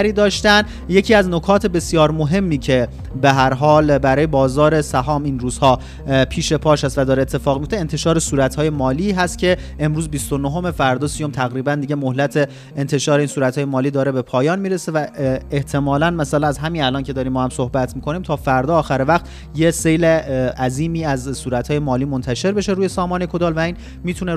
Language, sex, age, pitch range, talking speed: Persian, male, 30-49, 130-170 Hz, 180 wpm